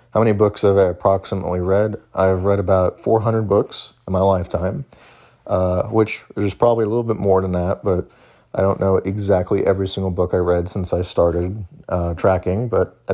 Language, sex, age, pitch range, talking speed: English, male, 30-49, 90-105 Hz, 190 wpm